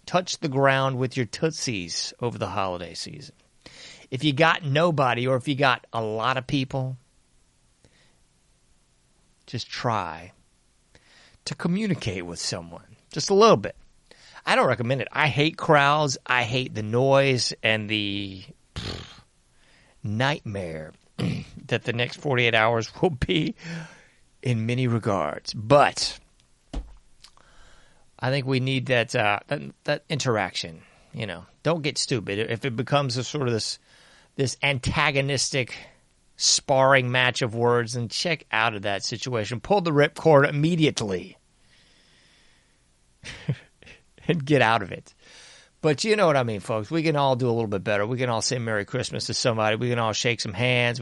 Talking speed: 150 wpm